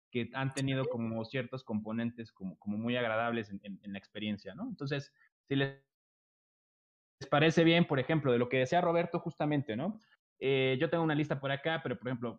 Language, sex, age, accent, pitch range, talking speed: Spanish, male, 20-39, Mexican, 120-150 Hz, 195 wpm